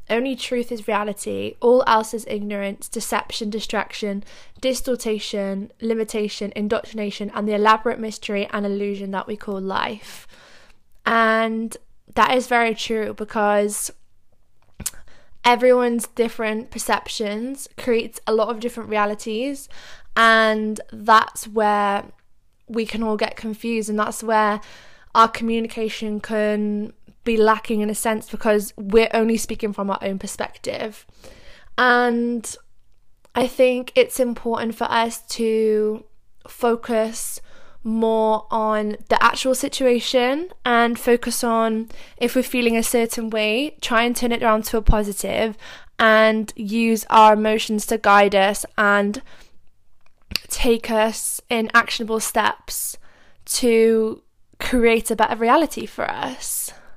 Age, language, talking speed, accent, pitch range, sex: 10-29, English, 120 wpm, British, 215-235 Hz, female